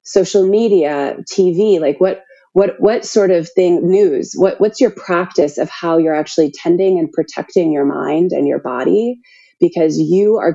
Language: English